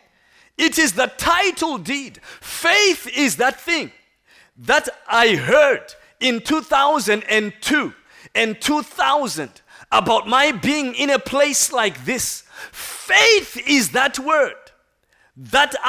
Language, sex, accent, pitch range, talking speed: English, male, South African, 245-320 Hz, 110 wpm